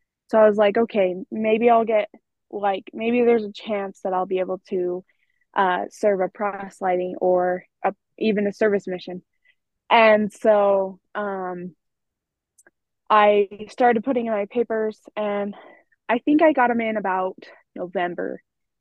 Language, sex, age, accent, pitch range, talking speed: English, female, 20-39, American, 195-225 Hz, 150 wpm